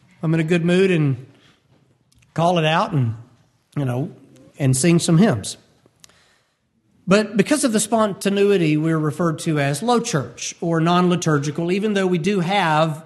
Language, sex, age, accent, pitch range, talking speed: English, male, 50-69, American, 150-205 Hz, 155 wpm